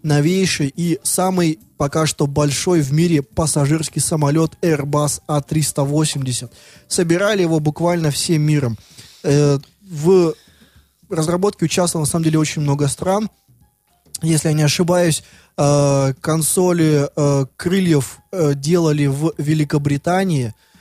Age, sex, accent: 20-39, male, native